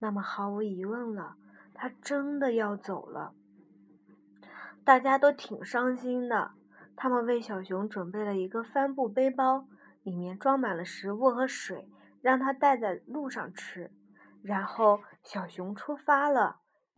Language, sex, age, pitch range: Chinese, female, 20-39, 215-300 Hz